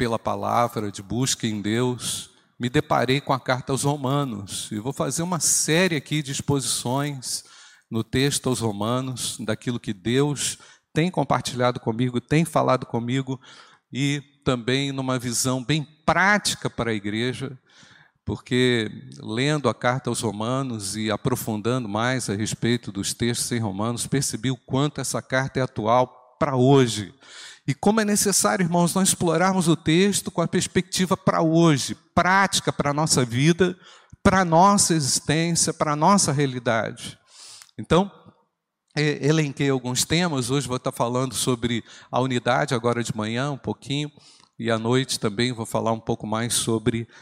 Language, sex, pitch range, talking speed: Portuguese, male, 120-155 Hz, 150 wpm